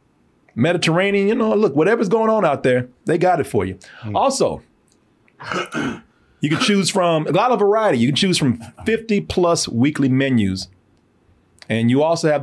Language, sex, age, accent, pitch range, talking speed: English, male, 30-49, American, 120-175 Hz, 170 wpm